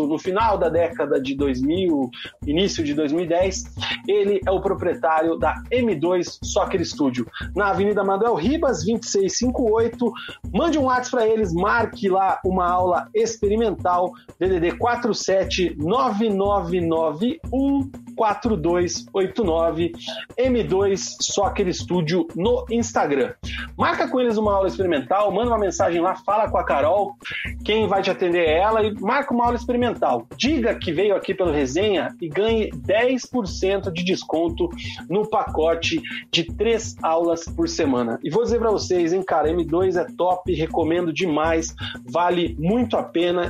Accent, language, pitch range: Brazilian, Portuguese, 170-230 Hz